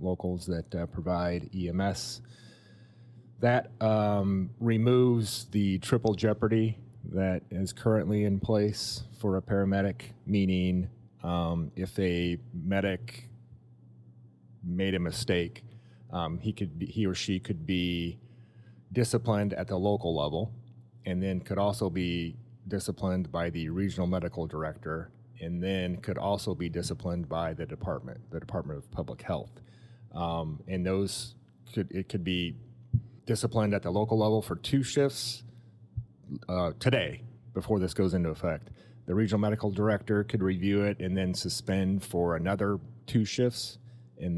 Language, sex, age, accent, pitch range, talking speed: English, male, 30-49, American, 90-115 Hz, 140 wpm